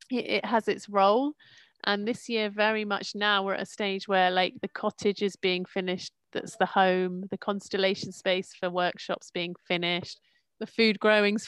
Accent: British